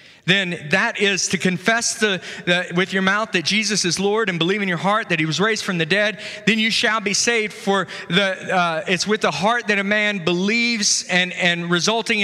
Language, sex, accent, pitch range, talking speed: English, male, American, 205-290 Hz, 220 wpm